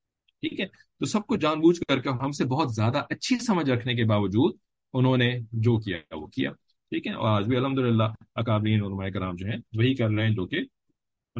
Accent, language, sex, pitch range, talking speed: Indian, English, male, 115-165 Hz, 200 wpm